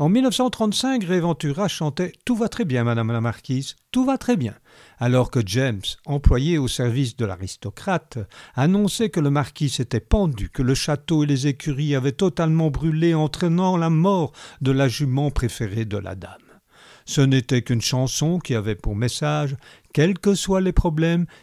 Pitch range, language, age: 120-180 Hz, French, 50-69